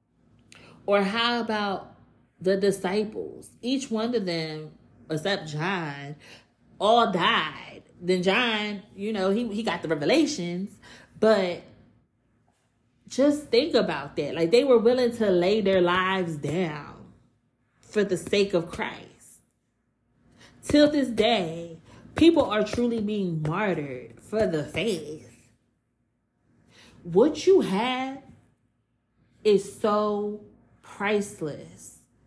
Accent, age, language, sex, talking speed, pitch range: American, 30-49, English, female, 110 wpm, 150-210 Hz